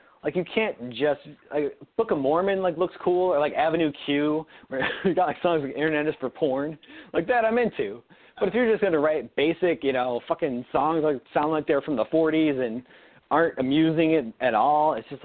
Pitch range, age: 140-195 Hz, 40-59